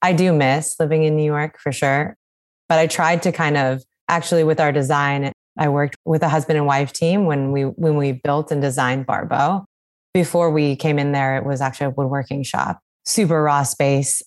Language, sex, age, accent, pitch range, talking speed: English, female, 20-39, American, 135-160 Hz, 205 wpm